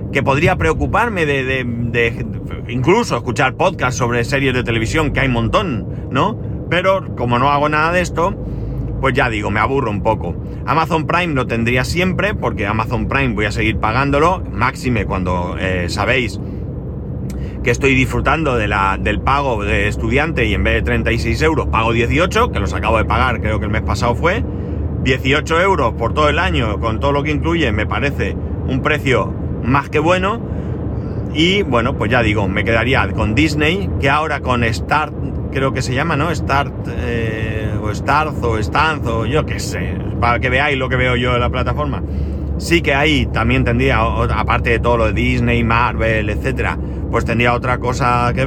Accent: Spanish